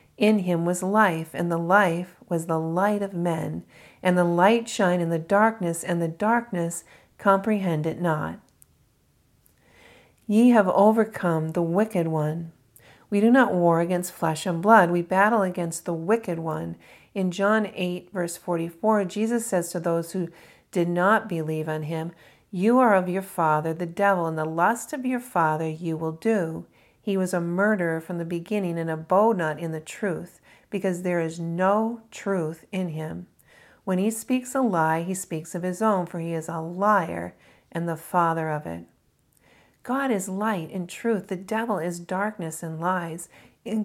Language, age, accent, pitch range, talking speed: English, 40-59, American, 165-205 Hz, 175 wpm